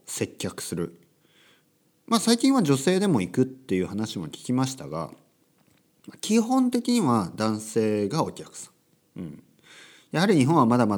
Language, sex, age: Japanese, male, 40-59